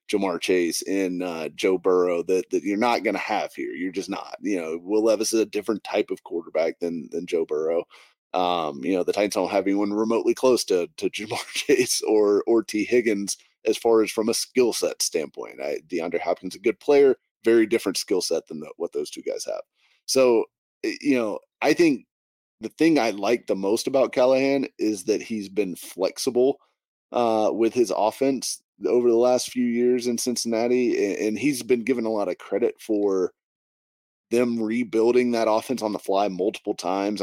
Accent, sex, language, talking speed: American, male, English, 195 wpm